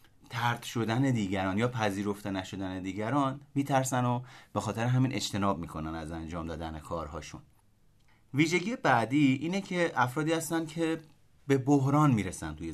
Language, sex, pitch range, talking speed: Persian, male, 105-145 Hz, 135 wpm